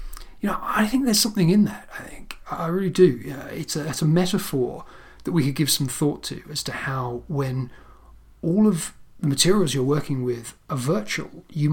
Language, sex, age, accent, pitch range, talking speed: English, male, 40-59, British, 125-155 Hz, 195 wpm